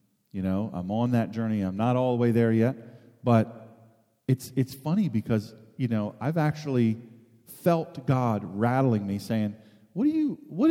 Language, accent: English, American